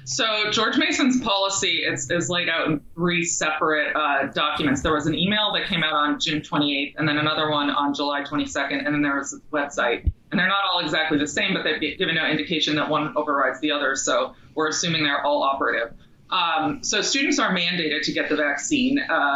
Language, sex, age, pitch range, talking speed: English, female, 20-39, 150-195 Hz, 210 wpm